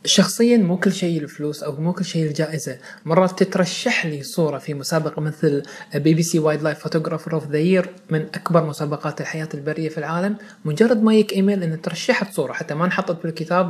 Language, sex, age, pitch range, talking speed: Arabic, male, 20-39, 155-185 Hz, 190 wpm